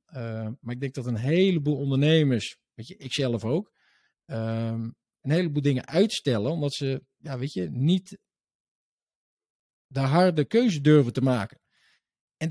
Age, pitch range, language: 50-69, 125-165 Hz, Dutch